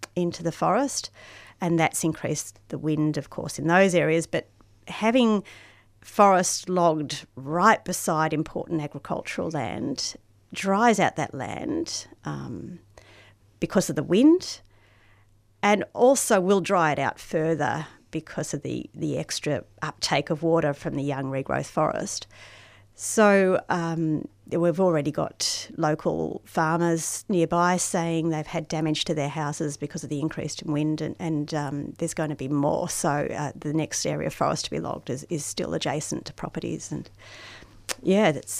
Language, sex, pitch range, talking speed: English, female, 140-185 Hz, 155 wpm